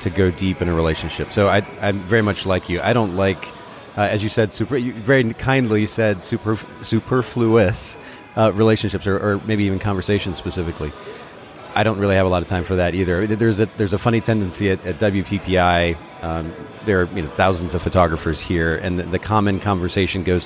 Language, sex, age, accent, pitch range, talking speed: English, male, 30-49, American, 95-110 Hz, 195 wpm